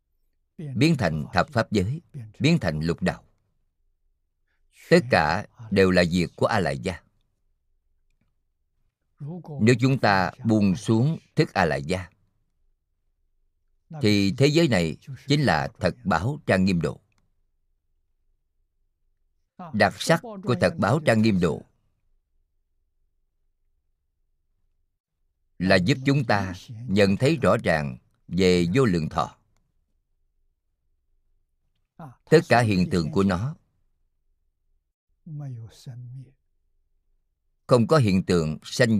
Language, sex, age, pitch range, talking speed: Vietnamese, male, 50-69, 80-115 Hz, 105 wpm